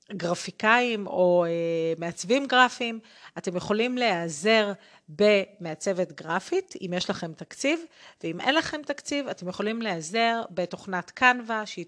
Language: Hebrew